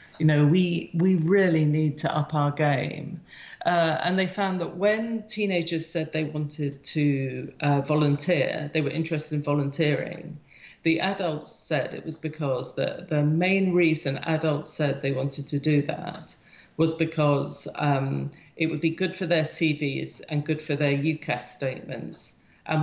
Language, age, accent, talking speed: English, 40-59, British, 165 wpm